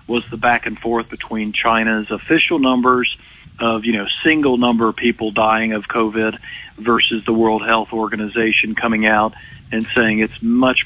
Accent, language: American, English